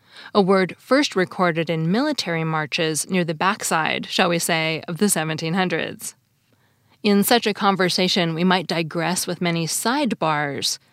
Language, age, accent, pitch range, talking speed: English, 20-39, American, 160-205 Hz, 145 wpm